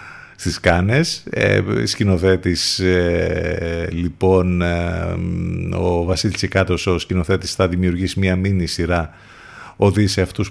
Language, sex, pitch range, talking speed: Greek, male, 85-115 Hz, 110 wpm